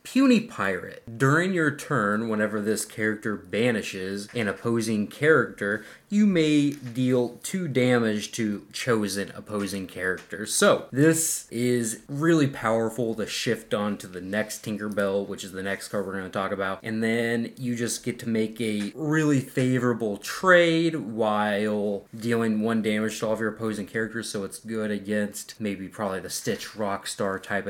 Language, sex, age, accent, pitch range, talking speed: English, male, 20-39, American, 105-130 Hz, 160 wpm